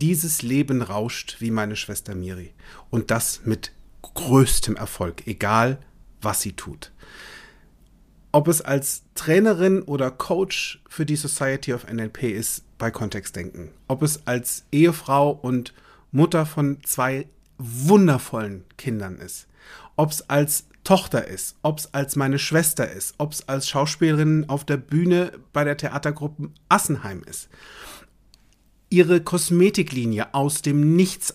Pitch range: 115-170 Hz